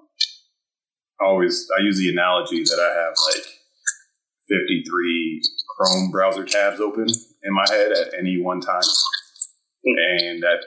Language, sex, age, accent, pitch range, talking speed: English, male, 30-49, American, 280-340 Hz, 135 wpm